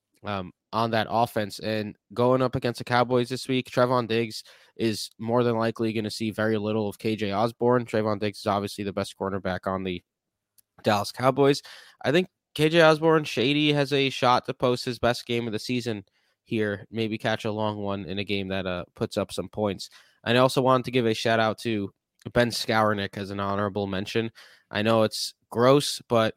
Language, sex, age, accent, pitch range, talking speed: English, male, 20-39, American, 105-125 Hz, 205 wpm